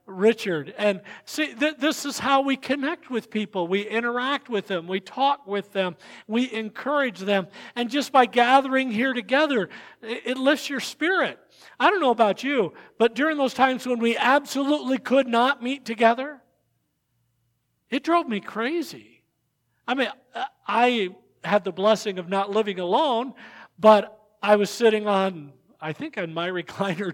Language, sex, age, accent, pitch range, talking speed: English, male, 50-69, American, 185-245 Hz, 160 wpm